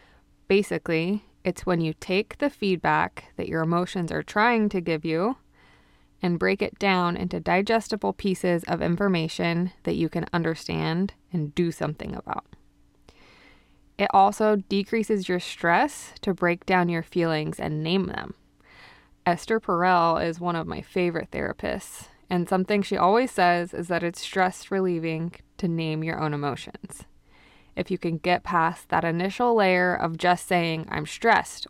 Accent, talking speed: American, 155 wpm